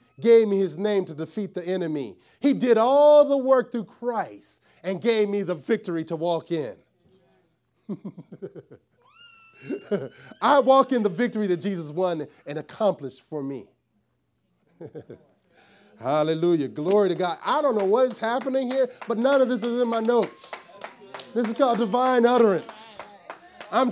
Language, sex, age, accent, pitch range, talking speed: English, male, 30-49, American, 185-245 Hz, 150 wpm